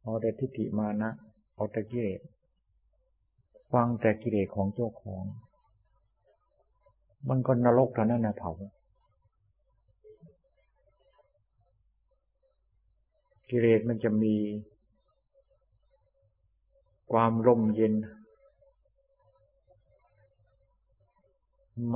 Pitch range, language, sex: 105-120 Hz, Thai, male